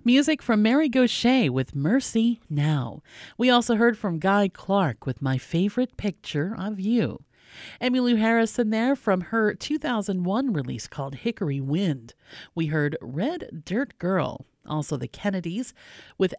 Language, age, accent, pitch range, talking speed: English, 50-69, American, 150-230 Hz, 140 wpm